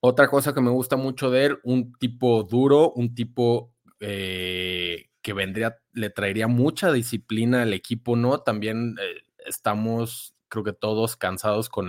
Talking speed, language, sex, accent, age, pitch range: 155 wpm, Spanish, male, Mexican, 20-39, 105-125 Hz